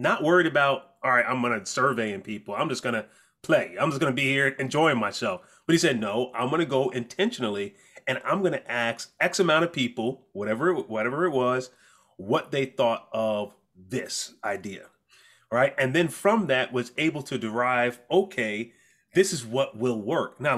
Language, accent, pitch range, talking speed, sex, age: English, American, 125-170 Hz, 200 wpm, male, 30-49